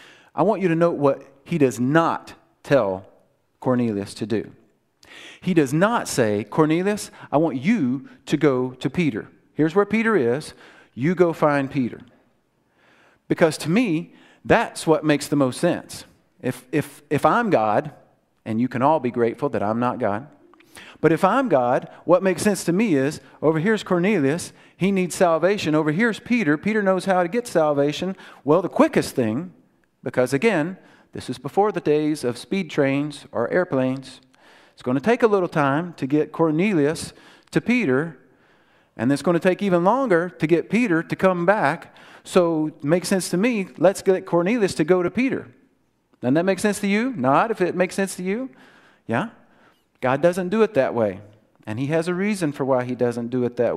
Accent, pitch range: American, 135-185 Hz